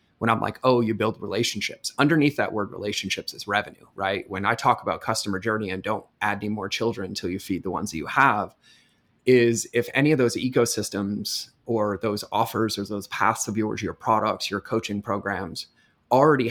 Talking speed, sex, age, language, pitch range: 195 wpm, male, 20-39, English, 100-120 Hz